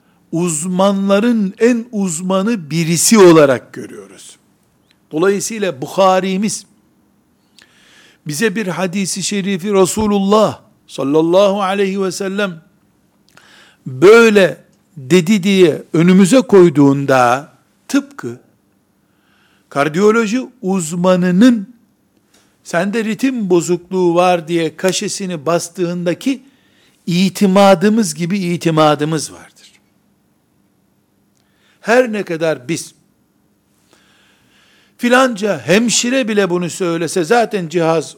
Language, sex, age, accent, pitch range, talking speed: Turkish, male, 60-79, native, 140-200 Hz, 75 wpm